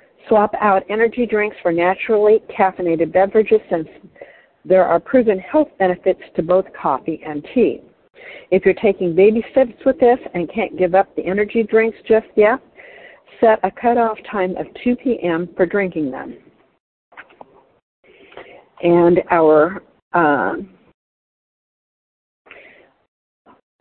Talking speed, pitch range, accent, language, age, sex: 120 wpm, 175-225 Hz, American, English, 60-79, female